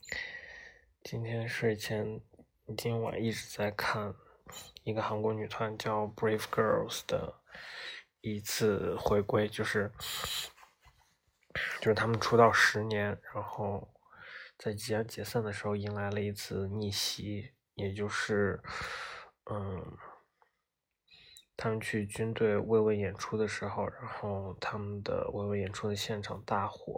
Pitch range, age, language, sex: 100-110 Hz, 20-39, Chinese, male